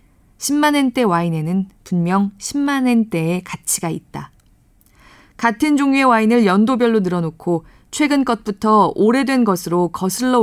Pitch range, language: 180-250 Hz, Korean